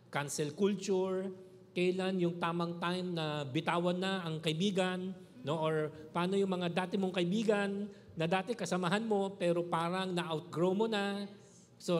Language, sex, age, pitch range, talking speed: Filipino, male, 50-69, 145-185 Hz, 145 wpm